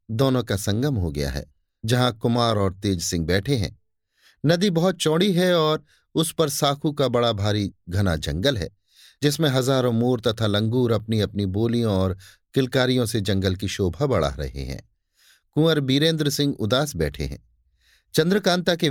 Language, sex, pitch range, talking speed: Hindi, male, 95-140 Hz, 165 wpm